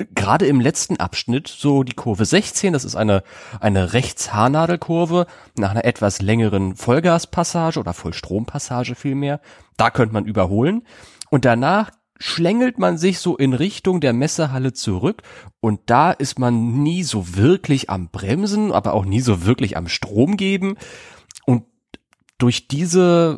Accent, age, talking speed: German, 30-49, 145 wpm